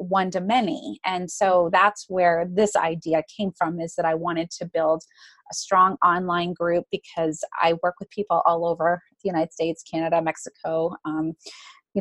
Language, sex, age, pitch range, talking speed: English, female, 30-49, 170-205 Hz, 175 wpm